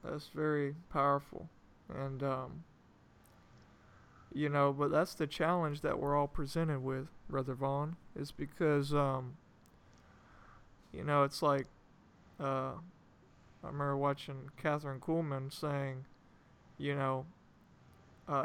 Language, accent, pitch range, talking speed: English, American, 135-155 Hz, 110 wpm